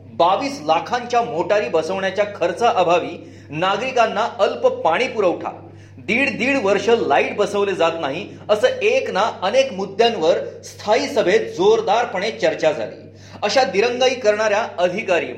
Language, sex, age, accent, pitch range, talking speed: Marathi, male, 40-59, native, 180-255 Hz, 120 wpm